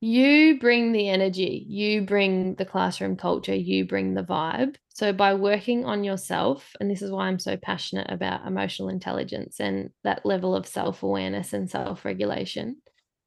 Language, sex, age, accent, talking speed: English, female, 20-39, Australian, 160 wpm